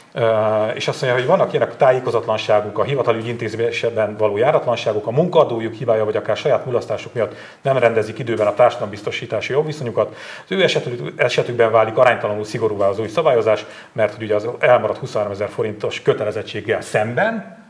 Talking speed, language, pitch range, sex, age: 155 wpm, Hungarian, 105-120 Hz, male, 40-59